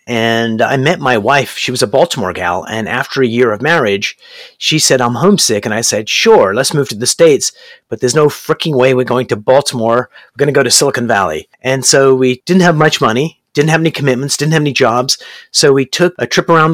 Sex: male